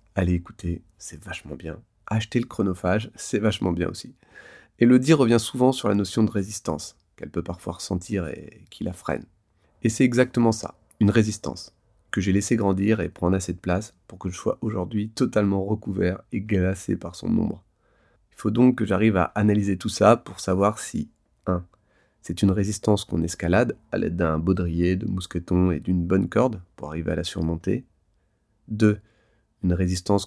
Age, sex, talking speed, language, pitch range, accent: 30-49, male, 185 wpm, French, 85-105 Hz, French